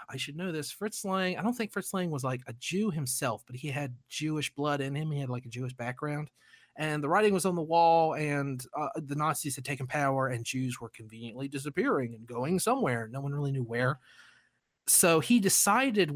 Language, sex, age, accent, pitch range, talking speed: English, male, 30-49, American, 125-175 Hz, 220 wpm